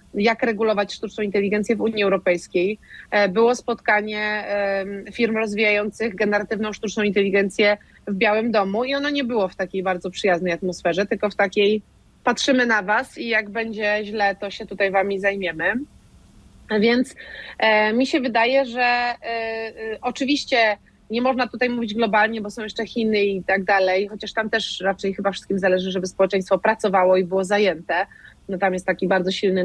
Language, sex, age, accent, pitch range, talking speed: Polish, female, 30-49, native, 195-240 Hz, 160 wpm